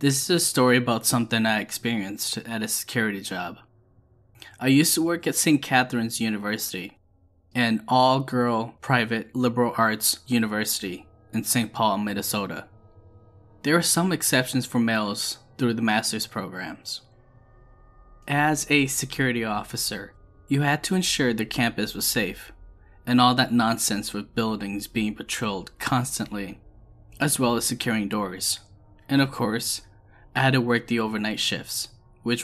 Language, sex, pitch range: English, male, 105-130 Hz